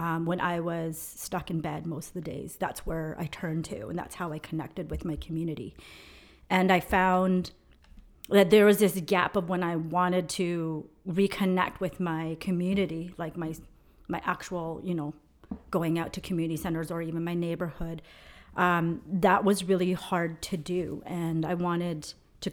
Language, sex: English, female